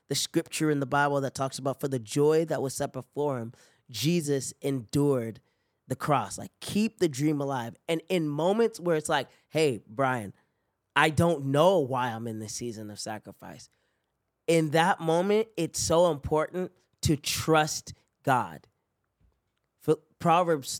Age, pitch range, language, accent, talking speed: 20-39, 120-160 Hz, English, American, 155 wpm